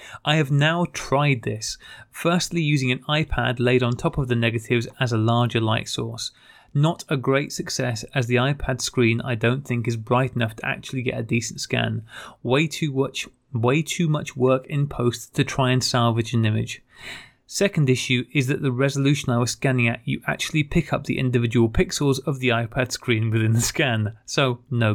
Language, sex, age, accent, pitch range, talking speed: English, male, 30-49, British, 120-145 Hz, 195 wpm